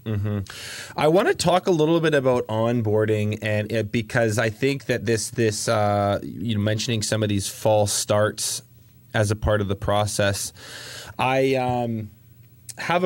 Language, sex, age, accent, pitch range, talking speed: English, male, 20-39, American, 100-125 Hz, 165 wpm